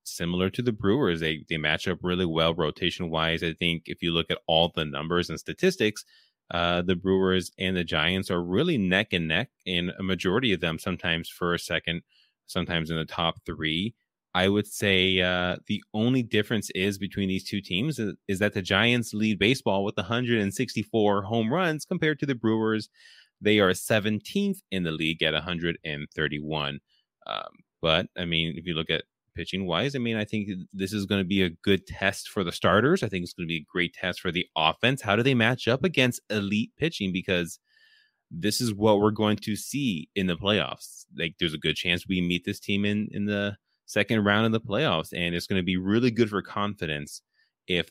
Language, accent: English, American